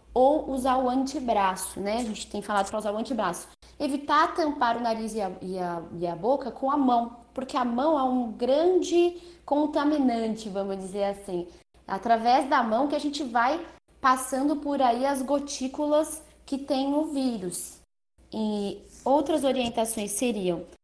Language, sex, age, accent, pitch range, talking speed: Portuguese, female, 20-39, Brazilian, 200-270 Hz, 155 wpm